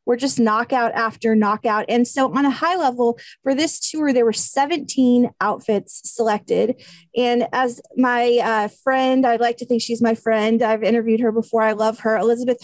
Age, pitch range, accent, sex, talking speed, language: 30-49, 220-250 Hz, American, female, 185 wpm, English